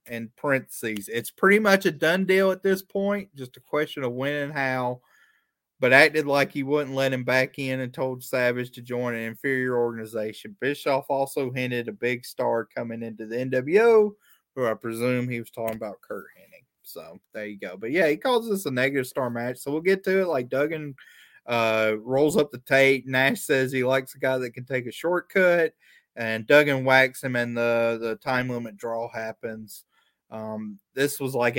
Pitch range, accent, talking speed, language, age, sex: 115-140 Hz, American, 200 wpm, English, 20-39, male